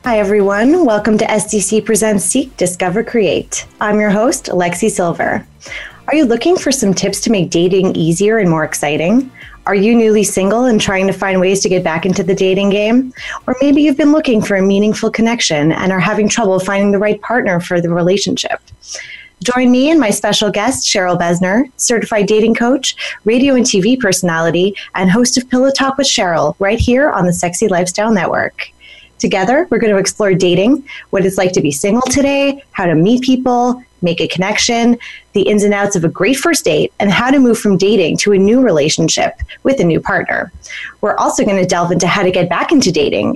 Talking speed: 205 wpm